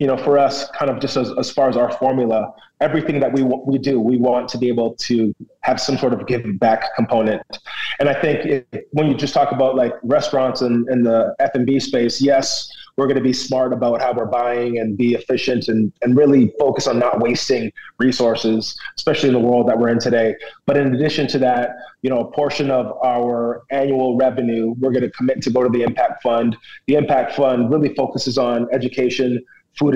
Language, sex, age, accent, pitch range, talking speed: English, male, 30-49, American, 120-140 Hz, 215 wpm